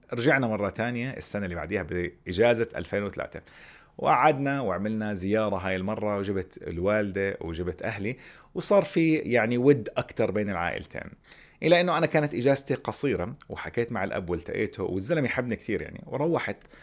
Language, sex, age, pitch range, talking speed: Arabic, male, 30-49, 90-115 Hz, 140 wpm